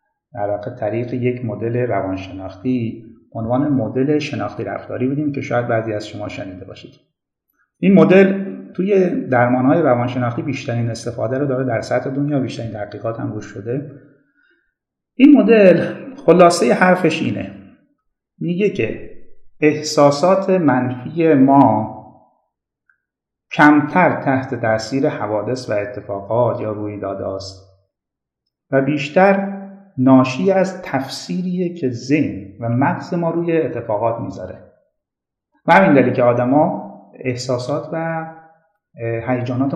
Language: Persian